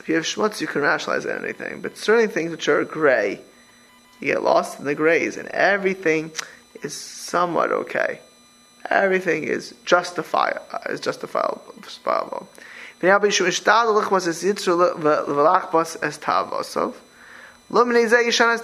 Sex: male